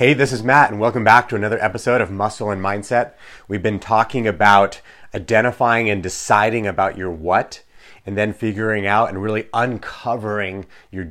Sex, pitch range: male, 100-125 Hz